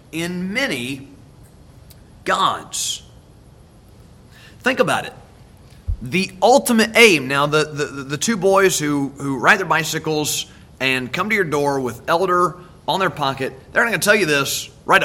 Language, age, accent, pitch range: English, 30-49, American, 145-220 Hz